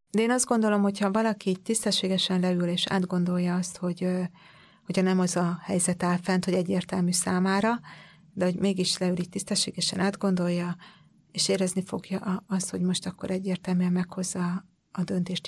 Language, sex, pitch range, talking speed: Hungarian, female, 180-195 Hz, 155 wpm